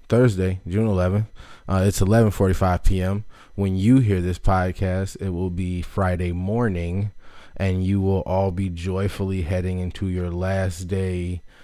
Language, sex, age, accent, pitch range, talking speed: English, male, 20-39, American, 90-105 Hz, 145 wpm